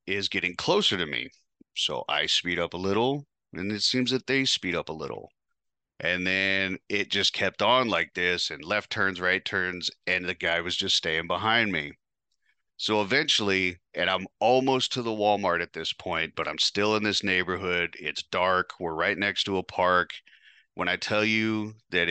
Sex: male